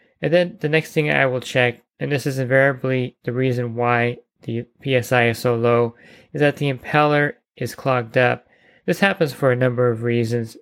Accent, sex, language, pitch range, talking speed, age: American, male, English, 120-135 Hz, 190 wpm, 20-39